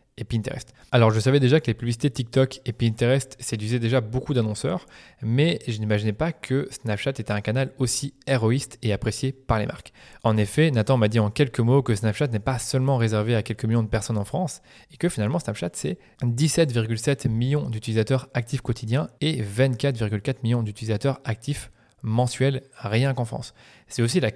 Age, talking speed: 20-39, 185 wpm